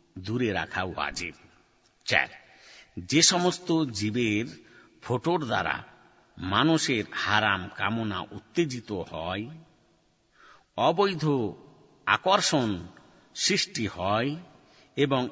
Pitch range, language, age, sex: 105-150 Hz, Bengali, 50-69, male